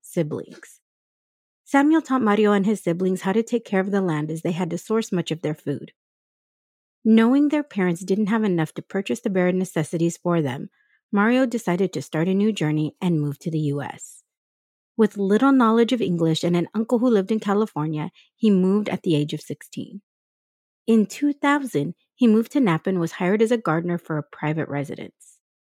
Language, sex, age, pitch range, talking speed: English, female, 30-49, 165-220 Hz, 195 wpm